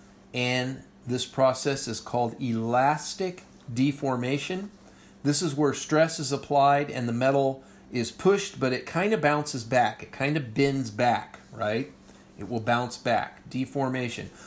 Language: English